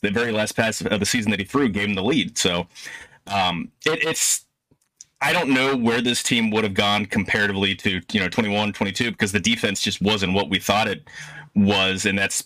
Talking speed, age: 215 wpm, 30-49